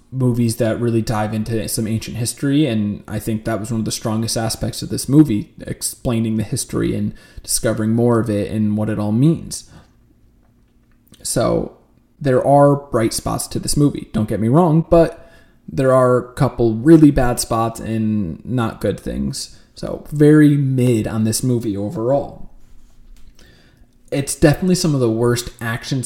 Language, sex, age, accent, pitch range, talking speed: English, male, 20-39, American, 110-135 Hz, 165 wpm